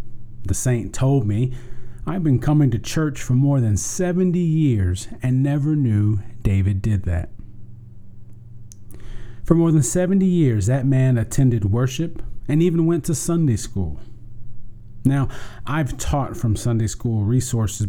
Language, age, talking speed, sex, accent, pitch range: English, 40-59, 140 wpm, male, American, 110-140 Hz